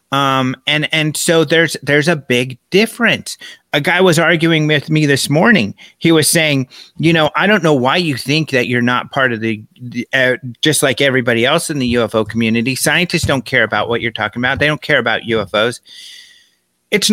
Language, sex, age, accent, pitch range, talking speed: English, male, 30-49, American, 120-165 Hz, 205 wpm